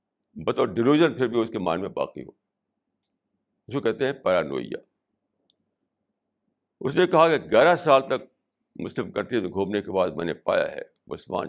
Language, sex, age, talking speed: Urdu, male, 60-79, 165 wpm